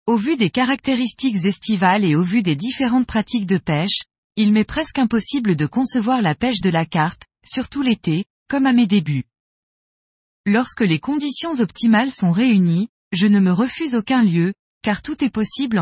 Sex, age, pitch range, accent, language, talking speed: female, 20-39, 190-250 Hz, French, French, 175 wpm